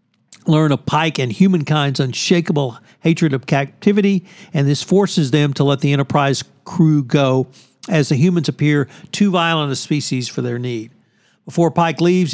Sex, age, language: male, 60-79, English